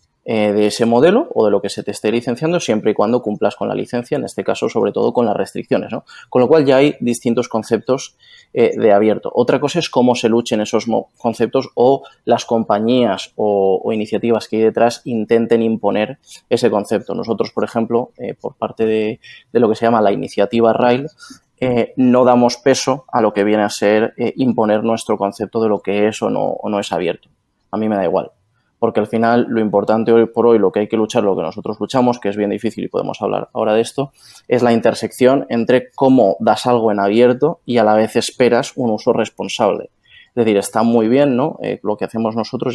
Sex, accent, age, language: male, Spanish, 20-39, Spanish